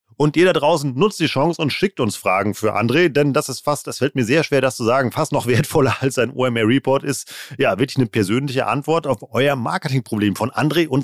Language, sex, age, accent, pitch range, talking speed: German, male, 40-59, German, 120-150 Hz, 235 wpm